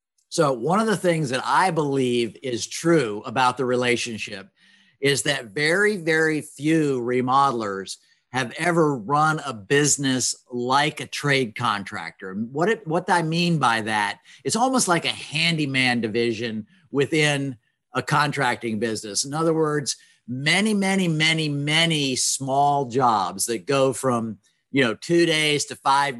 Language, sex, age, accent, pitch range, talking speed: English, male, 50-69, American, 125-160 Hz, 145 wpm